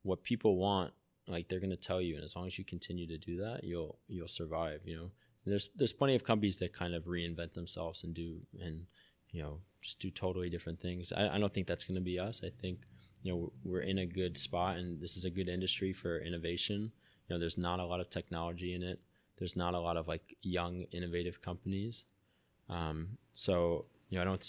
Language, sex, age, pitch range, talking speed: English, male, 20-39, 85-95 Hz, 235 wpm